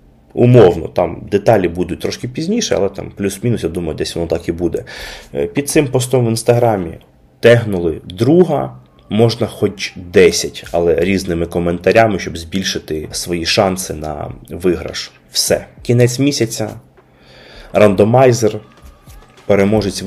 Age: 30-49